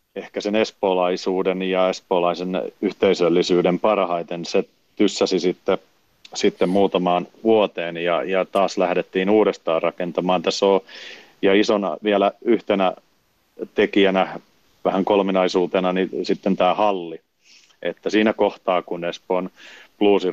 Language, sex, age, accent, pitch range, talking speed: Finnish, male, 40-59, native, 90-95 Hz, 110 wpm